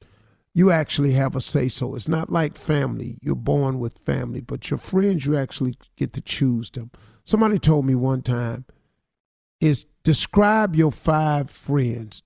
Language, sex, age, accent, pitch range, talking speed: English, male, 50-69, American, 130-170 Hz, 160 wpm